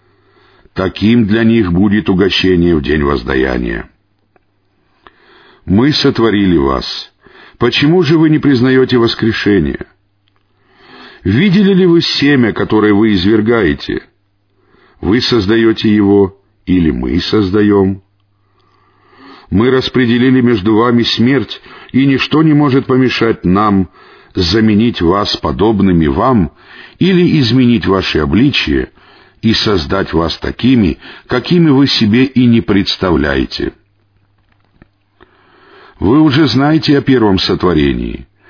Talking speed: 100 wpm